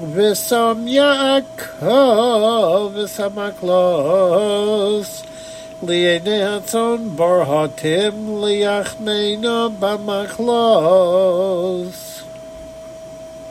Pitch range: 190-235 Hz